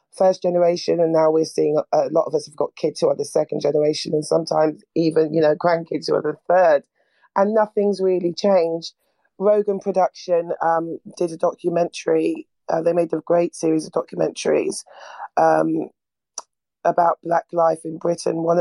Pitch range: 160-175 Hz